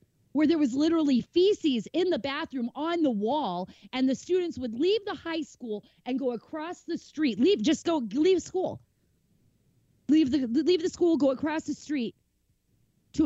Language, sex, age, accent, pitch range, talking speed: English, female, 30-49, American, 220-315 Hz, 175 wpm